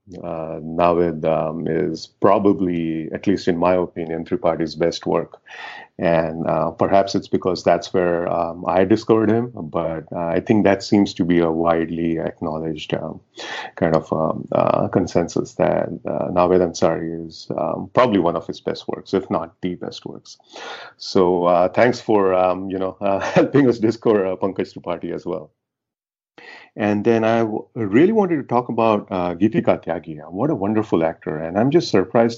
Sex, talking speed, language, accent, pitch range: male, 175 wpm, English, Indian, 80-95 Hz